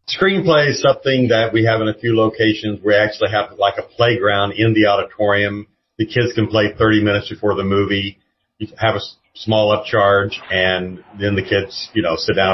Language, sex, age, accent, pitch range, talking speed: English, male, 40-59, American, 105-135 Hz, 195 wpm